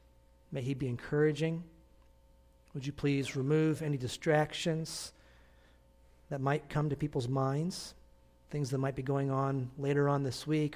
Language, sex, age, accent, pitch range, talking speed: English, male, 40-59, American, 125-180 Hz, 145 wpm